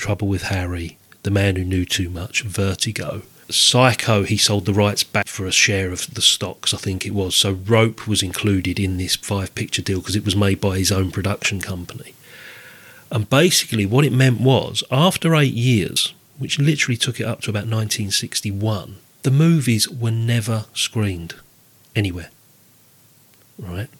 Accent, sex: British, male